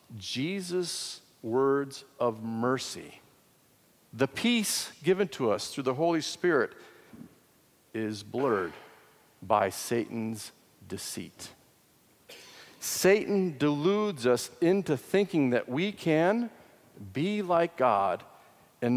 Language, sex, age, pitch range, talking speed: English, male, 50-69, 130-185 Hz, 95 wpm